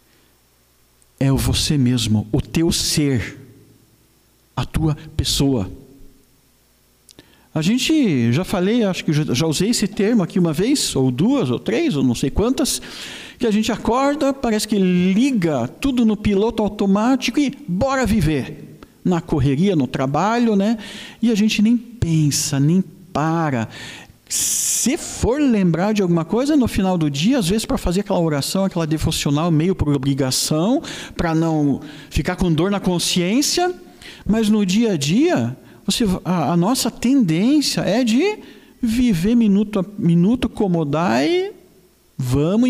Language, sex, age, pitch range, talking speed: Portuguese, male, 50-69, 150-220 Hz, 150 wpm